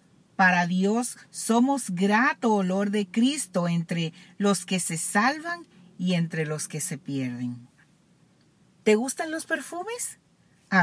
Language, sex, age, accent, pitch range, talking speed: Spanish, female, 40-59, American, 175-245 Hz, 125 wpm